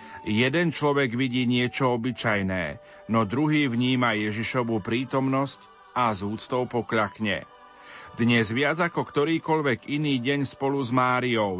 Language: Slovak